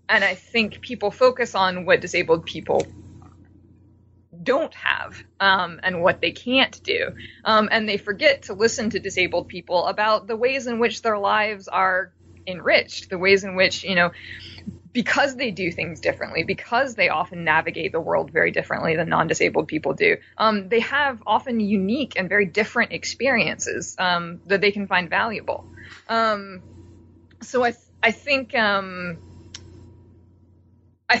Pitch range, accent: 175-230 Hz, American